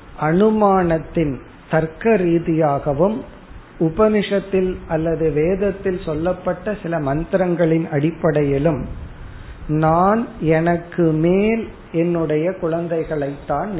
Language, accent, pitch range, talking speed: Tamil, native, 145-185 Hz, 60 wpm